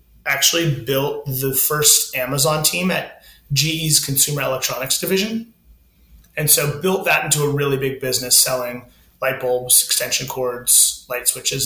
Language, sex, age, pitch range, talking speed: English, male, 30-49, 135-165 Hz, 140 wpm